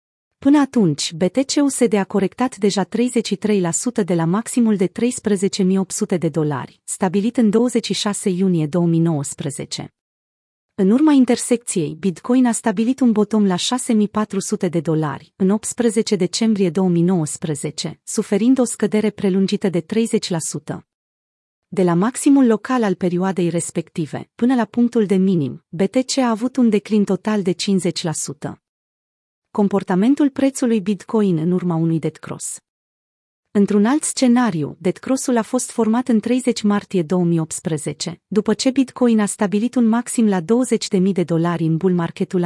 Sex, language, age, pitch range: female, Romanian, 30-49, 175-230 Hz